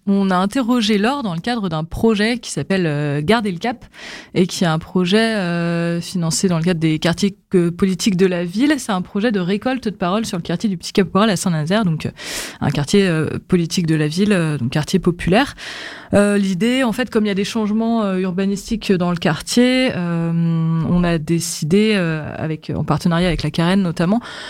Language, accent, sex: French, French, female